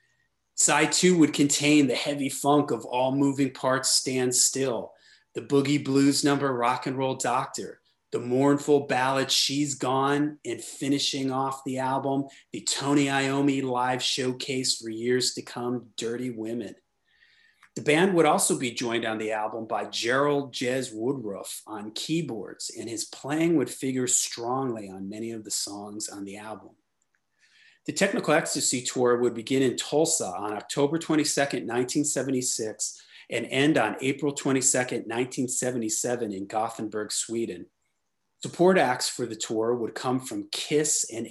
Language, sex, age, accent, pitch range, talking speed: English, male, 30-49, American, 120-145 Hz, 150 wpm